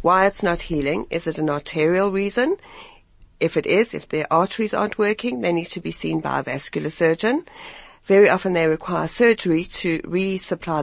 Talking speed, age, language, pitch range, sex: 185 wpm, 60-79, English, 155-185 Hz, female